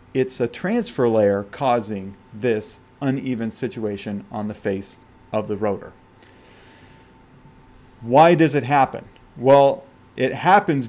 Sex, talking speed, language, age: male, 115 wpm, English, 40-59